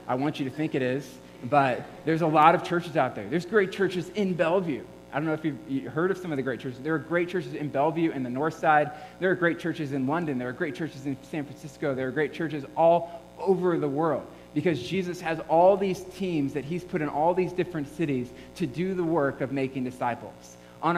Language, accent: English, American